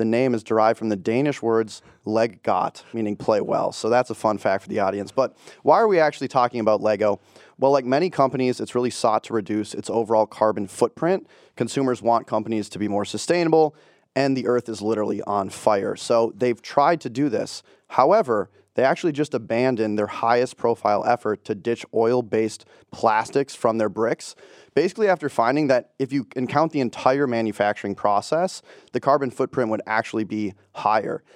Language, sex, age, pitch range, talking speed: English, male, 20-39, 110-130 Hz, 185 wpm